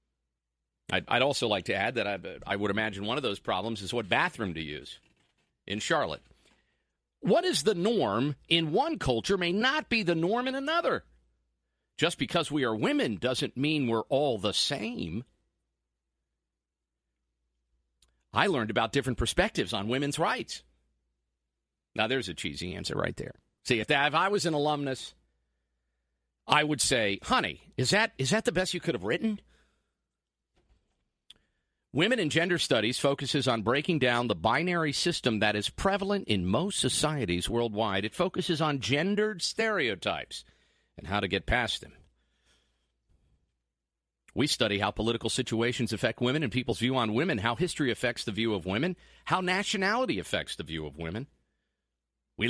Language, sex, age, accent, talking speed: English, male, 50-69, American, 160 wpm